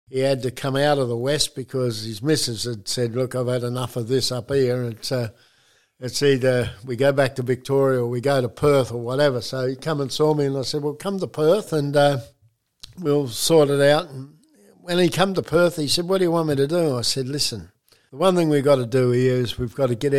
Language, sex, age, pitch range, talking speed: English, male, 60-79, 125-155 Hz, 270 wpm